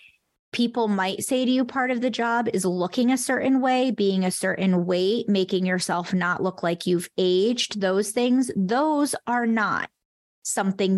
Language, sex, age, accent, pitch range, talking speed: English, female, 20-39, American, 185-235 Hz, 170 wpm